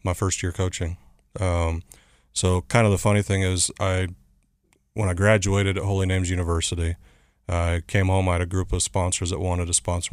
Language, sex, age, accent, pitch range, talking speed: English, male, 30-49, American, 85-95 Hz, 195 wpm